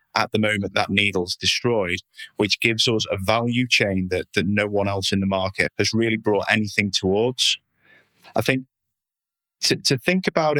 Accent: British